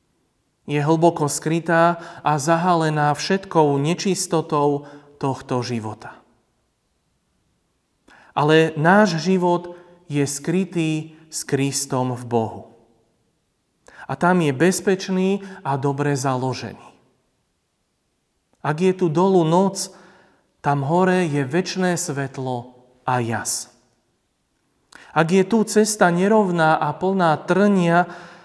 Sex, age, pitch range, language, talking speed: male, 40-59, 140-170 Hz, Slovak, 95 wpm